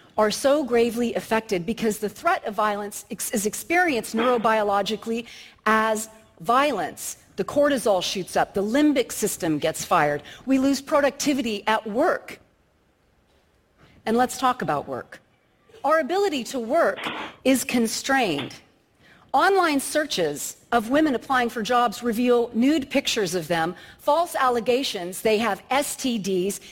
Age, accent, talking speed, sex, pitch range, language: 40-59, American, 125 wpm, female, 200-265 Hz, English